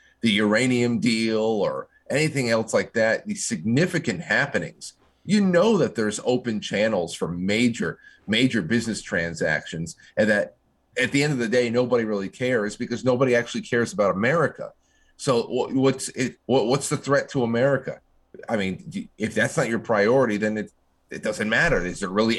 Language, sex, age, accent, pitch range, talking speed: English, male, 30-49, American, 105-135 Hz, 165 wpm